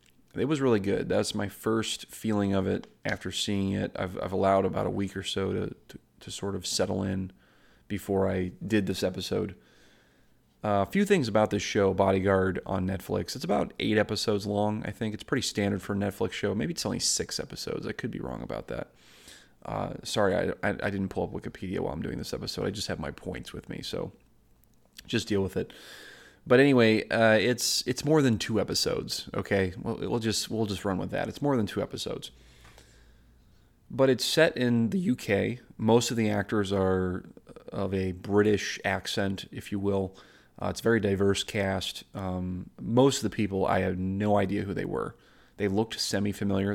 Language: English